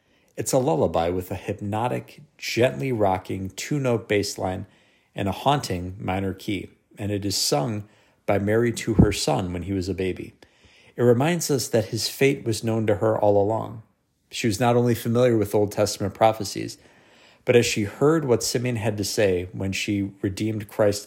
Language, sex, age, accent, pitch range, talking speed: English, male, 50-69, American, 95-110 Hz, 180 wpm